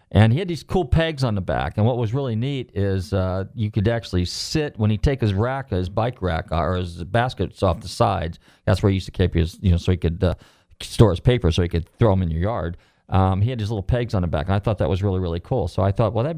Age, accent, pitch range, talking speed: 40-59, American, 95-125 Hz, 295 wpm